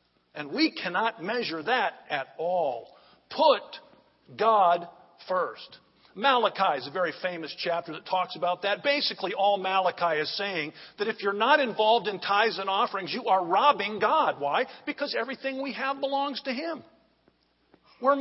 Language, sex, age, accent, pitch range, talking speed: English, male, 50-69, American, 180-275 Hz, 155 wpm